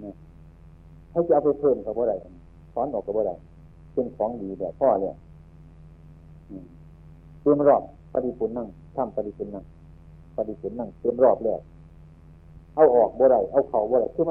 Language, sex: Chinese, male